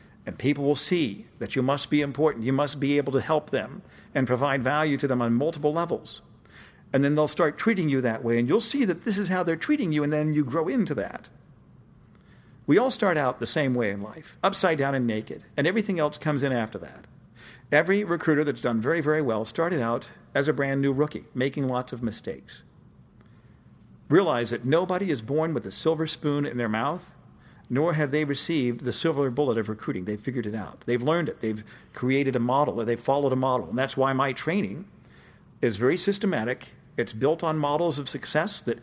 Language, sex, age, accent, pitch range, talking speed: English, male, 50-69, American, 125-165 Hz, 210 wpm